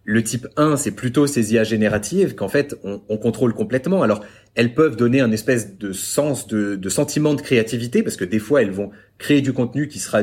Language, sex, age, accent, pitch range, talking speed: French, male, 30-49, French, 105-145 Hz, 225 wpm